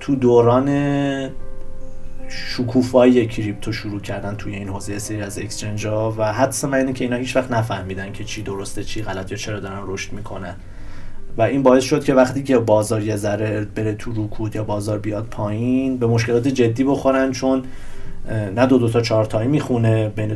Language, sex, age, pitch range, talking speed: Persian, male, 30-49, 105-125 Hz, 175 wpm